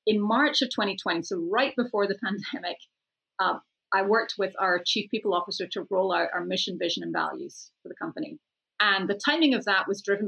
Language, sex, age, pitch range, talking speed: English, female, 30-49, 185-240 Hz, 205 wpm